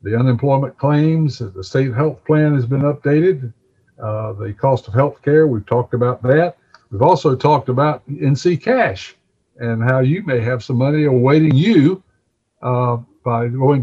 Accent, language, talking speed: American, English, 165 wpm